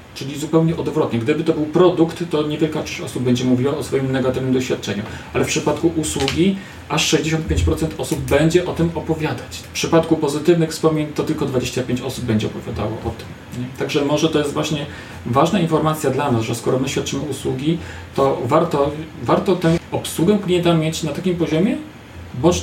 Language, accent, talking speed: Polish, native, 175 wpm